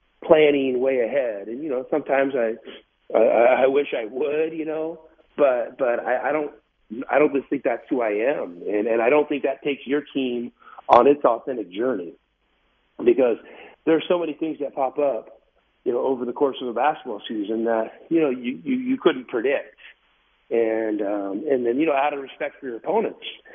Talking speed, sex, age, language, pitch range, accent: 200 wpm, male, 40-59, English, 120-155 Hz, American